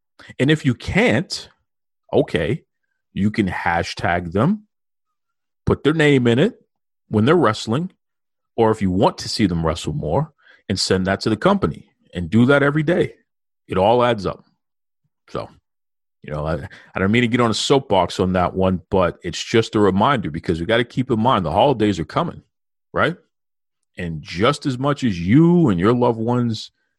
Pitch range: 95-125 Hz